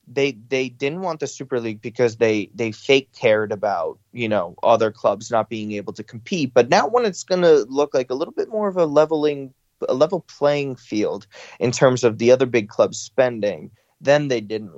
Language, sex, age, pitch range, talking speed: English, male, 20-39, 110-140 Hz, 210 wpm